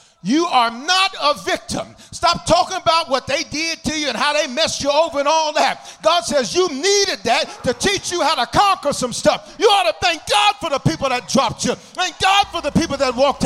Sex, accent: male, American